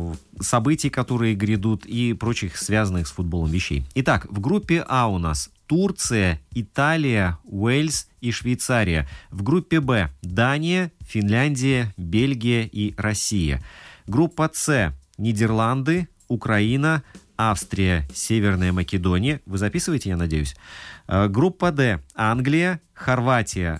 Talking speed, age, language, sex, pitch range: 110 wpm, 30-49, Russian, male, 95-135 Hz